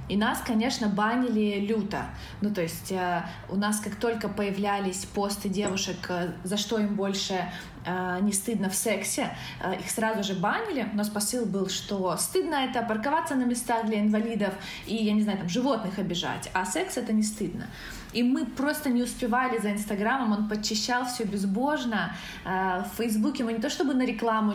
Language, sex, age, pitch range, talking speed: Ukrainian, female, 20-39, 195-240 Hz, 180 wpm